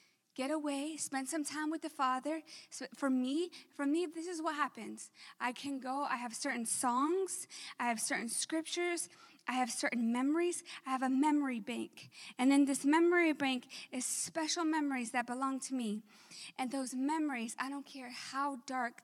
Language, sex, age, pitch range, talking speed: English, female, 20-39, 220-280 Hz, 180 wpm